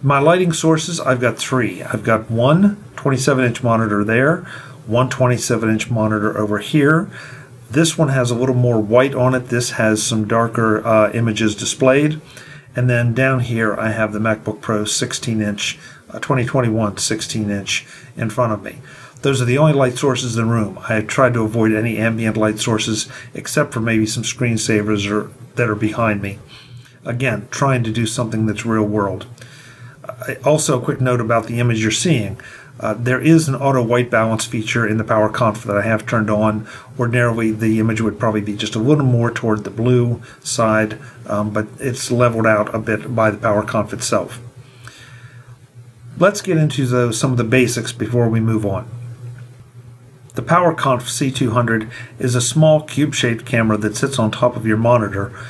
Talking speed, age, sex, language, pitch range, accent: 175 wpm, 50-69, male, English, 110-130 Hz, American